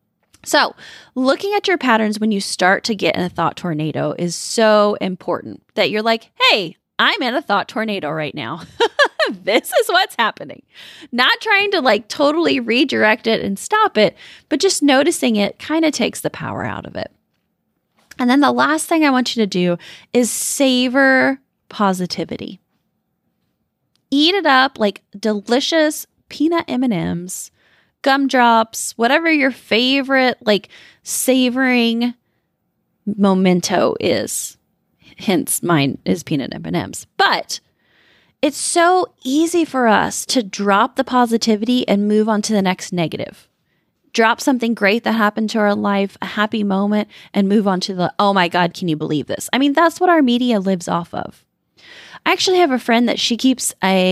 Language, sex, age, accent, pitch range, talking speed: English, female, 20-39, American, 200-275 Hz, 165 wpm